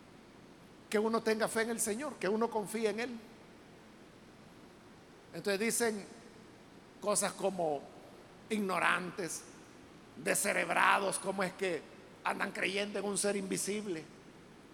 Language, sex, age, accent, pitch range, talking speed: Spanish, male, 50-69, Mexican, 200-275 Hz, 110 wpm